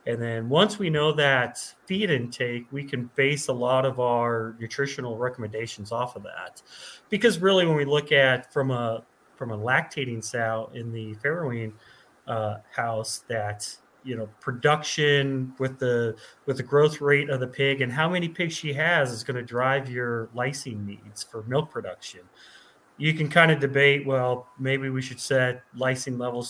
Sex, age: male, 30-49